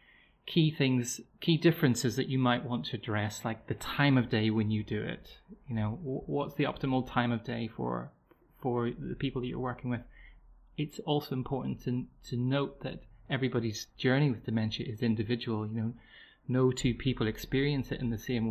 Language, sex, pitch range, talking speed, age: English, male, 120-145 Hz, 190 wpm, 30-49